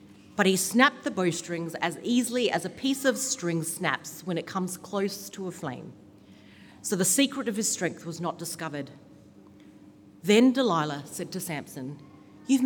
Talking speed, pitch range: 165 wpm, 150-235 Hz